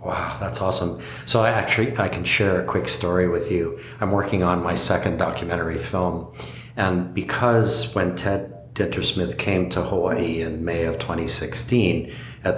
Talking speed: 160 wpm